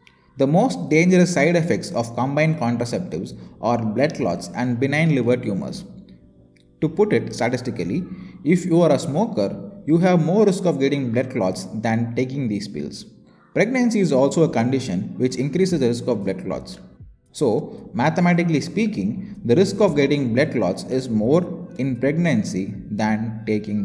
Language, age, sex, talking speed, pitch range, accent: English, 20-39, male, 160 wpm, 115-165 Hz, Indian